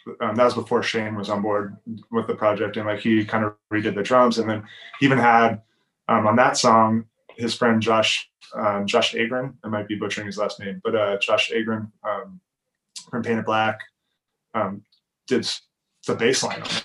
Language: English